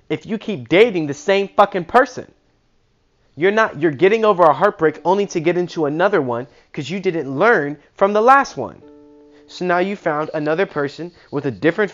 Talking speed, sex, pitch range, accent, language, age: 190 wpm, male, 130-175 Hz, American, English, 20-39